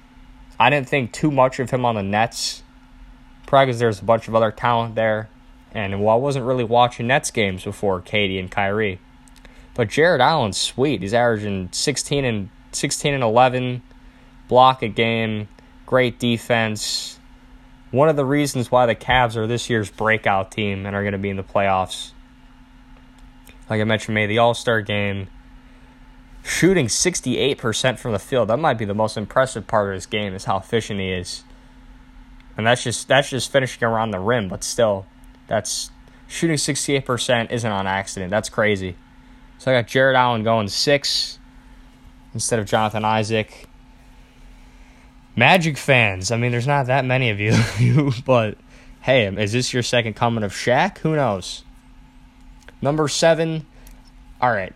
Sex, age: male, 10-29